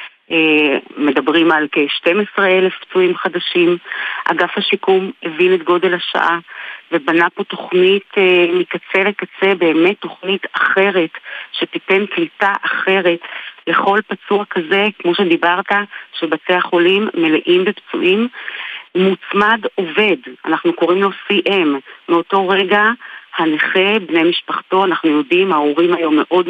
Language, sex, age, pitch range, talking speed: Hebrew, female, 40-59, 170-205 Hz, 105 wpm